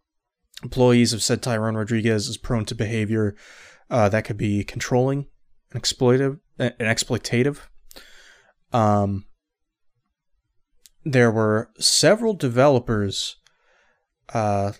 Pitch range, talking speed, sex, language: 110-130 Hz, 95 wpm, male, English